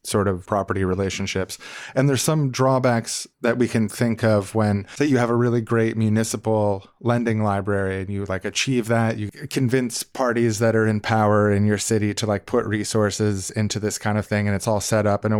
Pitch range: 105-120 Hz